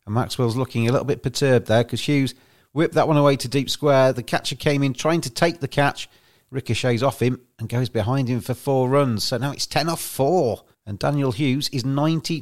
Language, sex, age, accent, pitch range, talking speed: English, male, 40-59, British, 120-155 Hz, 225 wpm